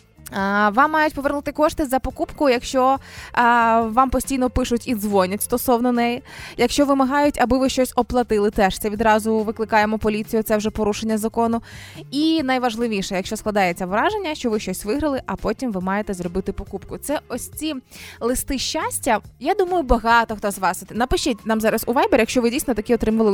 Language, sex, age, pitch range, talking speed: Ukrainian, female, 20-39, 210-275 Hz, 170 wpm